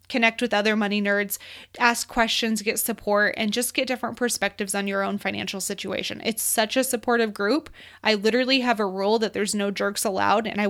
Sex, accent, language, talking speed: female, American, English, 200 wpm